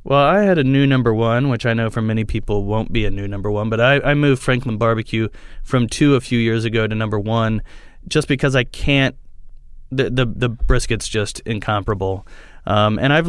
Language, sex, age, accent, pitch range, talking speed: English, male, 30-49, American, 105-130 Hz, 210 wpm